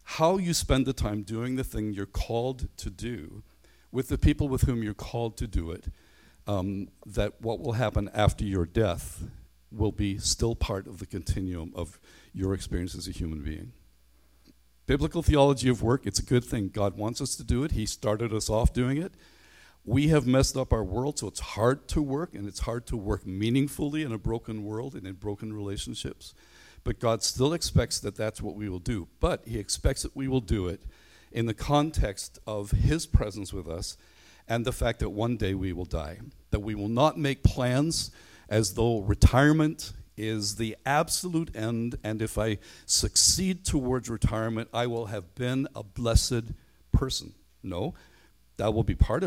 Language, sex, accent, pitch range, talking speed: English, male, American, 100-125 Hz, 190 wpm